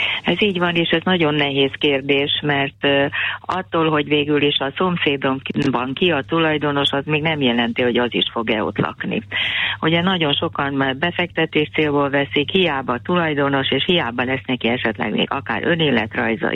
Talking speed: 165 wpm